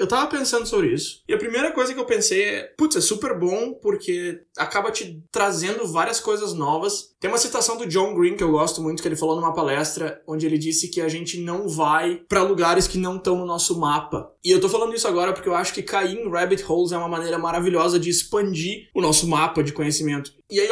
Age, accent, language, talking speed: 20-39, Brazilian, Portuguese, 240 wpm